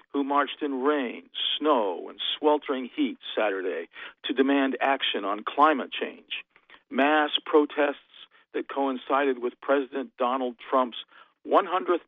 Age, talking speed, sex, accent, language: 50-69, 120 wpm, male, American, English